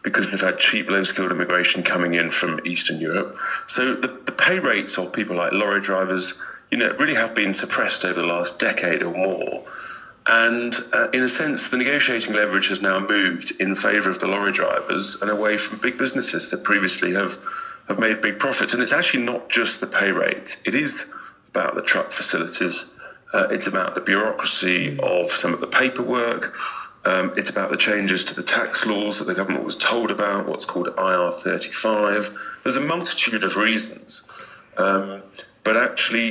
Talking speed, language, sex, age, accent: 190 wpm, English, male, 40-59, British